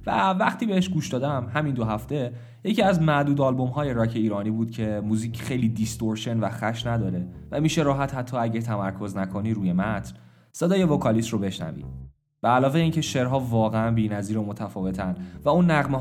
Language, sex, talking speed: Persian, male, 175 wpm